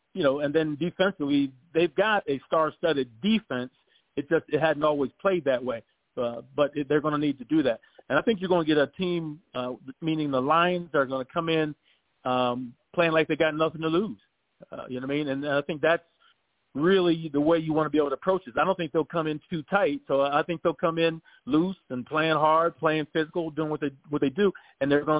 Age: 40-59